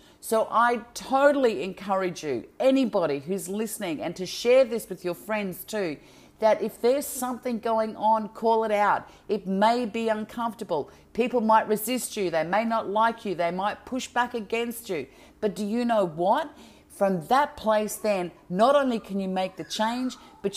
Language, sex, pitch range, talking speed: English, female, 185-230 Hz, 180 wpm